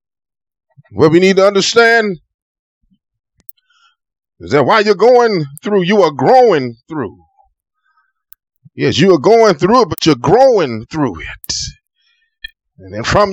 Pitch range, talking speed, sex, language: 160-220 Hz, 130 wpm, male, English